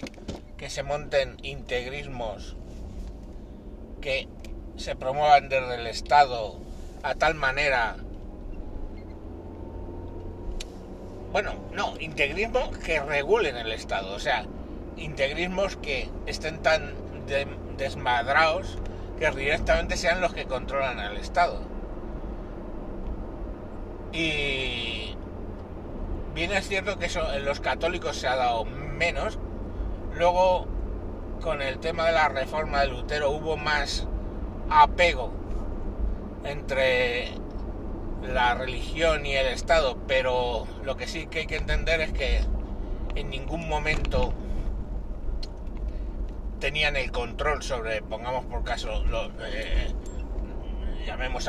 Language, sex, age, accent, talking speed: Spanish, male, 60-79, Spanish, 105 wpm